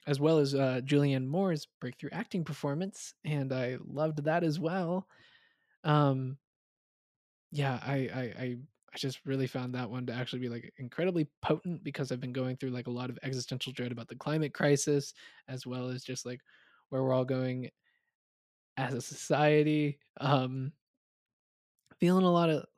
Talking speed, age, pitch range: 170 wpm, 20-39, 125-145 Hz